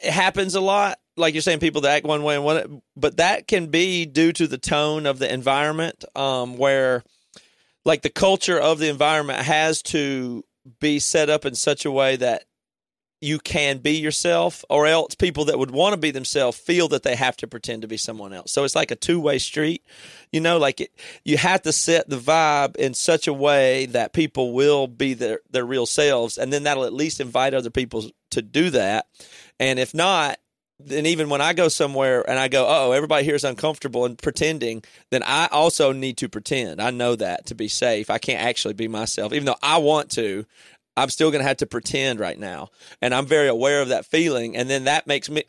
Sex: male